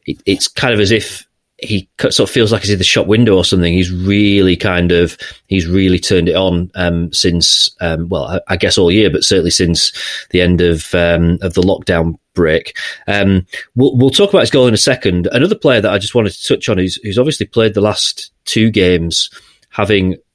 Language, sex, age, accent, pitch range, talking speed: English, male, 30-49, British, 90-110 Hz, 215 wpm